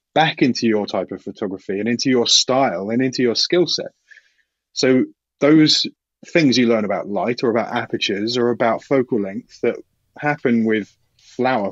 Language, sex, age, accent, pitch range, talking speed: English, male, 30-49, British, 110-145 Hz, 170 wpm